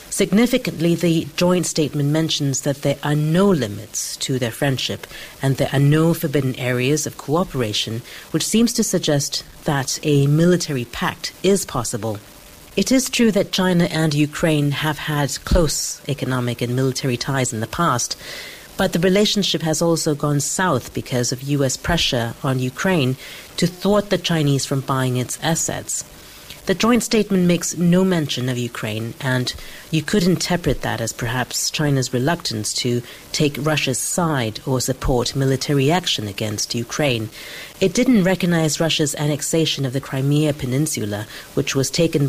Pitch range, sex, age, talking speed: 125-165 Hz, female, 40-59, 155 wpm